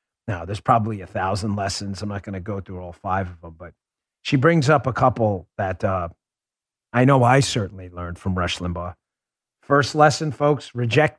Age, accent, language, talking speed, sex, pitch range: 40-59, American, English, 195 wpm, male, 110-155 Hz